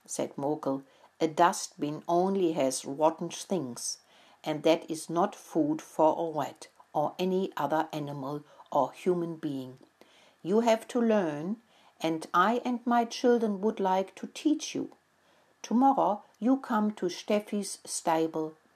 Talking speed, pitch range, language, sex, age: 140 wpm, 165-225 Hz, English, female, 60-79